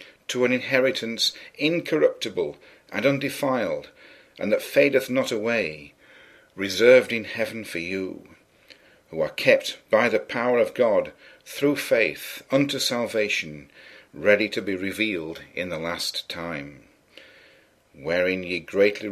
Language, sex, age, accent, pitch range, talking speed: English, male, 50-69, British, 100-135 Hz, 120 wpm